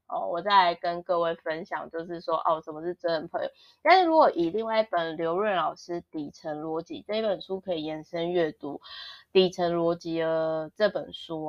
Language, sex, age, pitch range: Chinese, female, 20-39, 160-190 Hz